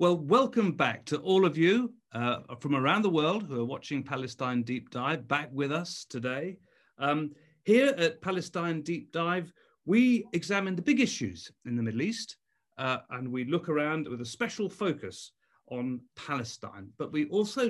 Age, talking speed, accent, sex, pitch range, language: 40-59, 175 wpm, British, male, 135-190 Hz, English